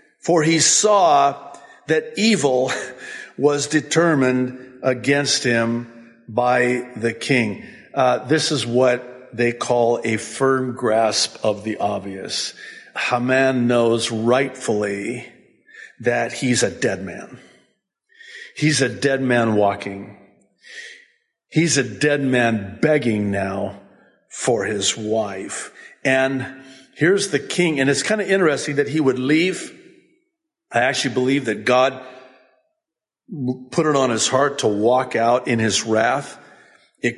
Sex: male